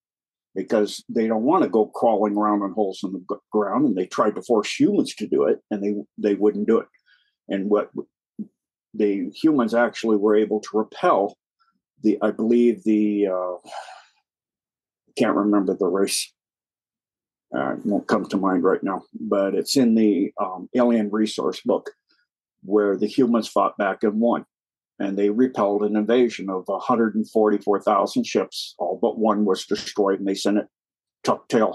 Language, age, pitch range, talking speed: English, 50-69, 100-115 Hz, 165 wpm